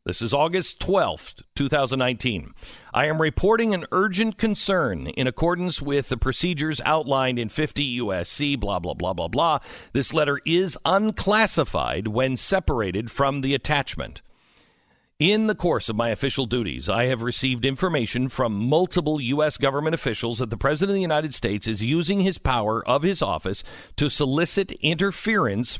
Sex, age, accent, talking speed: male, 50-69, American, 155 wpm